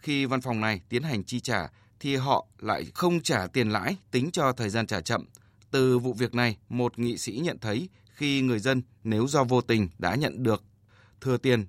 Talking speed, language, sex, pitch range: 215 wpm, Vietnamese, male, 105-135 Hz